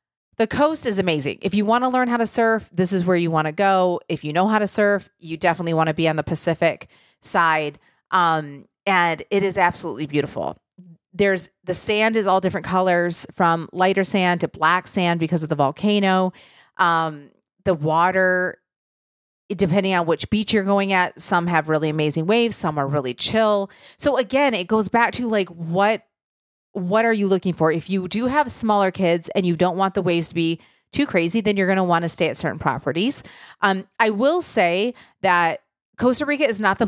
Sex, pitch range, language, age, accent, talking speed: female, 170-210 Hz, English, 30-49, American, 205 wpm